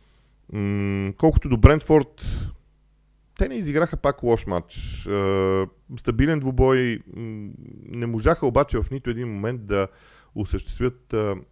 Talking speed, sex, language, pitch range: 105 wpm, male, Bulgarian, 95-120 Hz